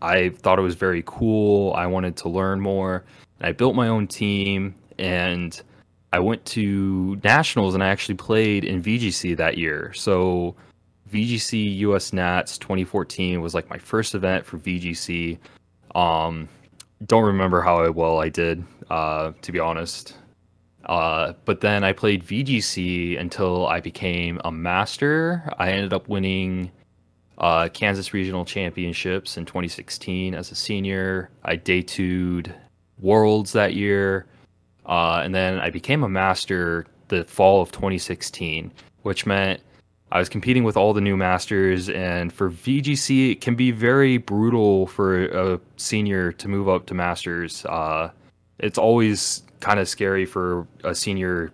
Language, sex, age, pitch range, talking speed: English, male, 20-39, 90-105 Hz, 150 wpm